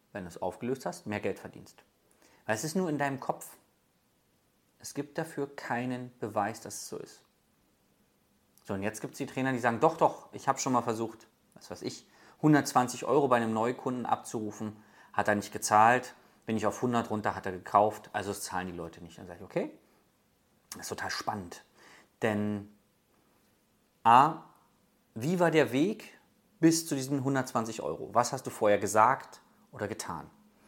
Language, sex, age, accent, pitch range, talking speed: German, male, 30-49, German, 105-145 Hz, 180 wpm